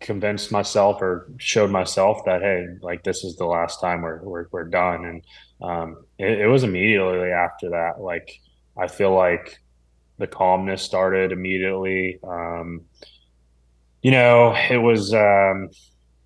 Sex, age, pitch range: male, 20-39, 80-100 Hz